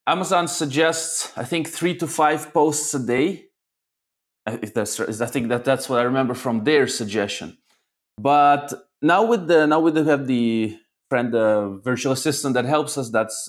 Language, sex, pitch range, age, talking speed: English, male, 125-185 Hz, 20-39, 175 wpm